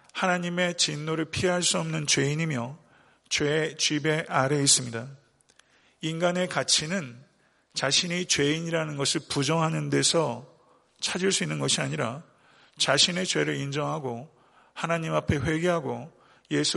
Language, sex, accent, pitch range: Korean, male, native, 140-170 Hz